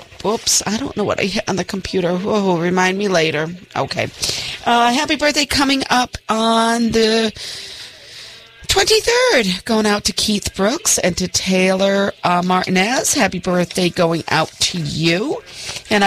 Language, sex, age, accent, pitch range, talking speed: English, female, 40-59, American, 170-230 Hz, 150 wpm